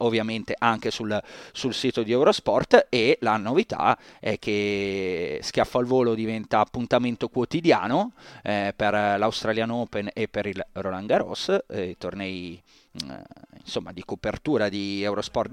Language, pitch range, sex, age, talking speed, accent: Italian, 110-130 Hz, male, 30-49, 140 wpm, native